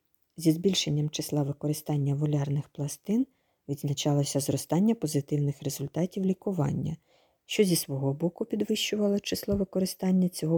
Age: 40-59